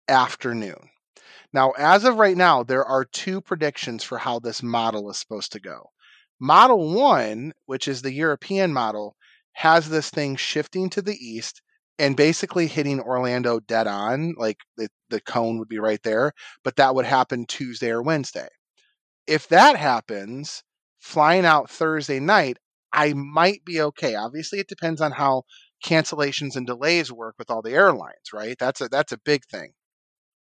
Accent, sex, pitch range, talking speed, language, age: American, male, 125-160 Hz, 165 wpm, English, 30-49